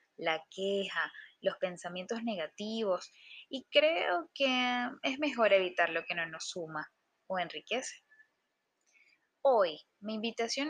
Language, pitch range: Spanish, 200-275 Hz